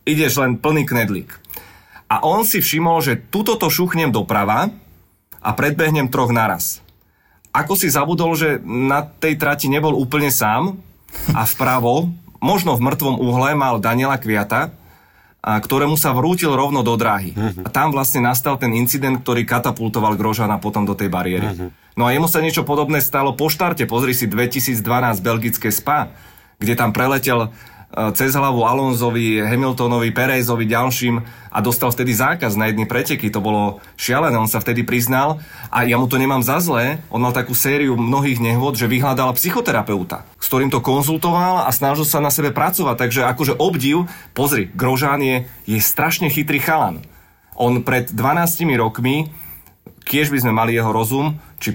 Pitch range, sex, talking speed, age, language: 115-150 Hz, male, 160 wpm, 30-49, Slovak